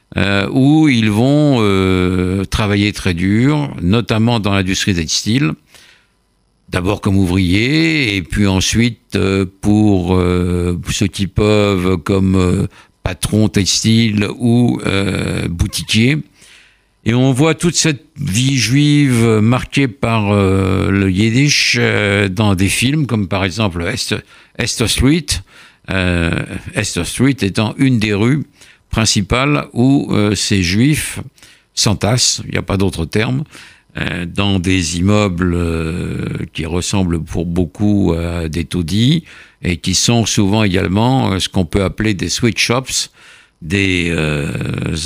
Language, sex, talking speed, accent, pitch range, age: French, male, 130 wpm, French, 95-115 Hz, 60-79